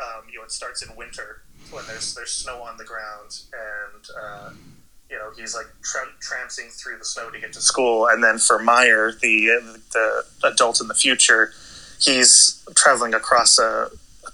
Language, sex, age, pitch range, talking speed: English, male, 30-49, 110-120 Hz, 185 wpm